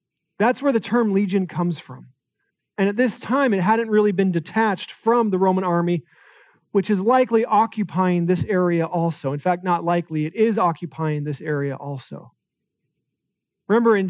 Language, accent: English, American